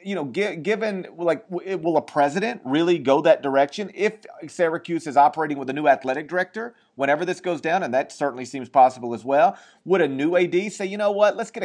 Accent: American